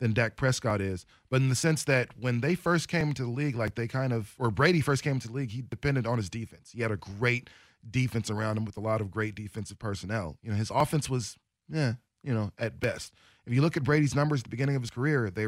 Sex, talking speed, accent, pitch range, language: male, 270 wpm, American, 110-130 Hz, English